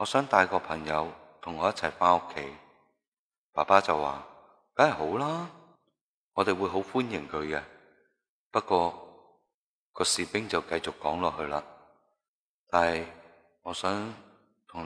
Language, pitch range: Chinese, 80-95 Hz